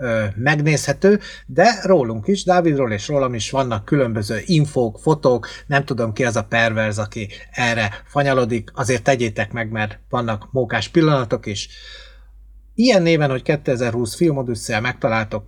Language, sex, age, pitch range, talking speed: Hungarian, male, 30-49, 110-150 Hz, 135 wpm